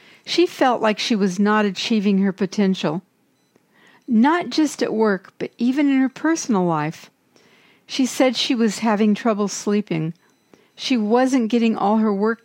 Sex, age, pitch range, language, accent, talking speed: female, 60-79, 200-245 Hz, English, American, 155 wpm